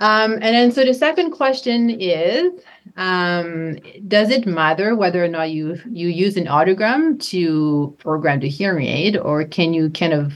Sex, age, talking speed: female, 30-49, 175 wpm